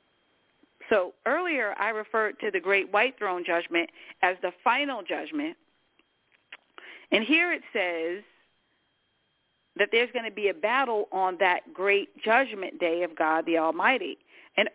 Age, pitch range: 40-59, 185-275 Hz